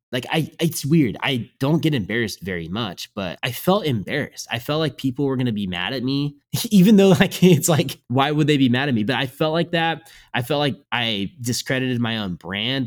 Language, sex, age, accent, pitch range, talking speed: English, male, 20-39, American, 105-150 Hz, 235 wpm